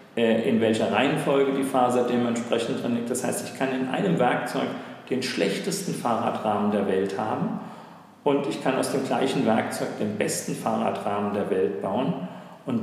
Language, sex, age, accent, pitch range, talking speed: German, male, 40-59, German, 110-135 Hz, 165 wpm